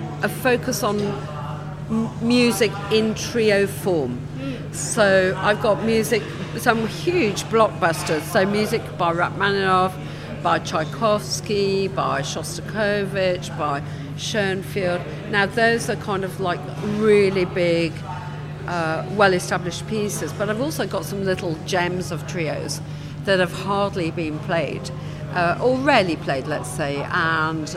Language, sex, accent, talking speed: English, female, British, 125 wpm